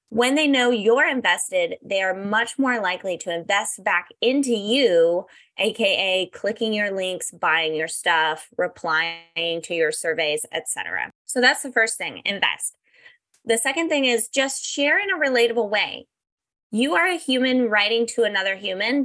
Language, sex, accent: English, female, American